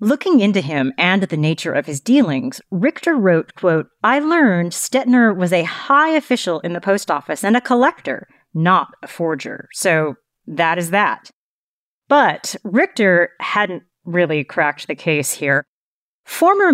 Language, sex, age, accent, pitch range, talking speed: English, female, 40-59, American, 165-230 Hz, 150 wpm